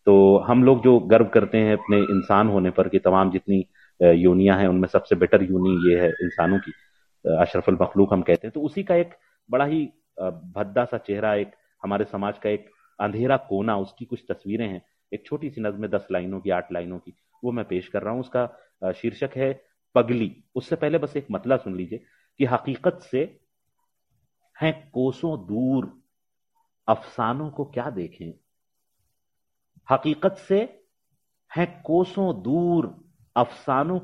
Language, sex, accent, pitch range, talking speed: Hindi, male, native, 100-150 Hz, 160 wpm